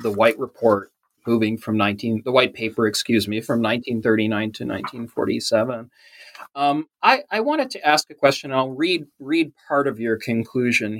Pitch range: 110-140 Hz